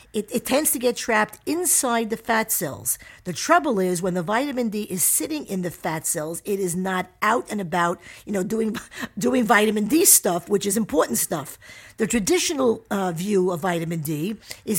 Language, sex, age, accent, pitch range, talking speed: English, female, 50-69, American, 175-230 Hz, 195 wpm